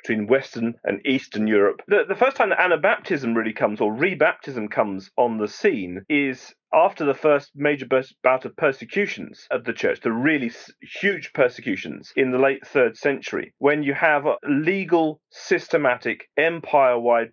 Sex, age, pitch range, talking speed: male, 40-59, 115-165 Hz, 155 wpm